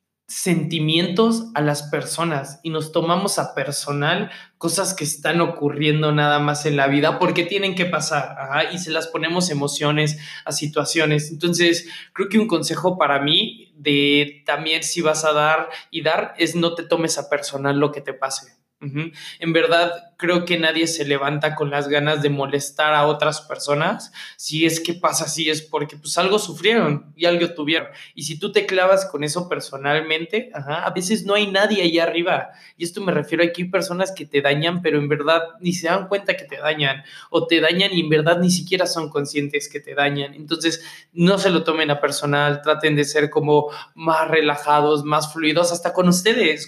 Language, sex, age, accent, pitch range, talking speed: Spanish, male, 20-39, Mexican, 150-175 Hz, 195 wpm